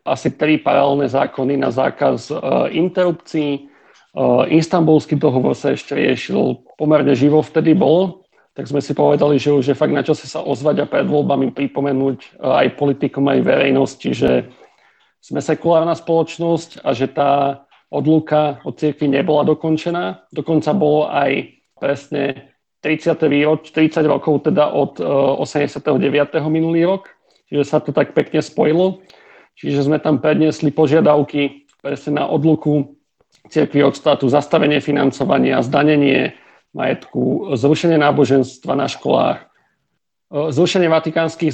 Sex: male